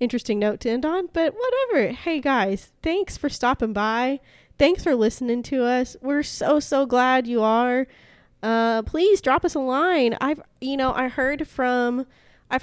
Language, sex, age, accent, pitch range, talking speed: English, female, 20-39, American, 210-265 Hz, 175 wpm